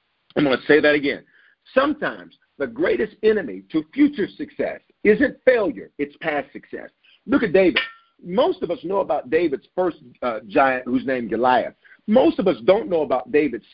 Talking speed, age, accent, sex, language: 180 wpm, 50-69, American, male, English